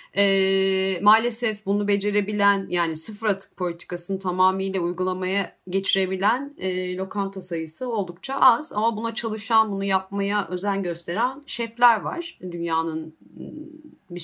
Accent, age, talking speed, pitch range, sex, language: native, 30-49, 115 wpm, 170-205 Hz, female, Turkish